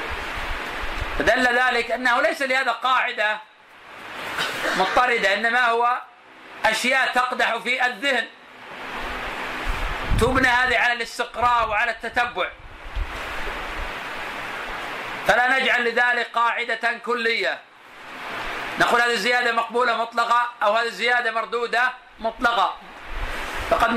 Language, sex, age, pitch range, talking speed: Arabic, male, 40-59, 225-245 Hz, 90 wpm